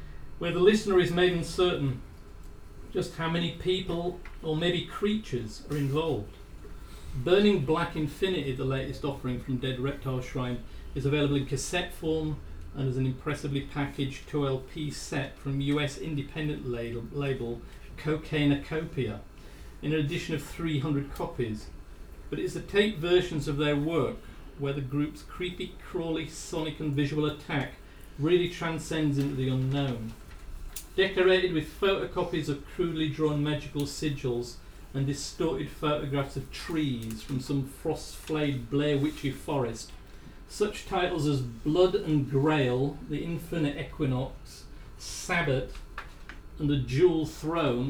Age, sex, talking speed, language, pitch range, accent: 40-59, male, 130 wpm, English, 130-165 Hz, British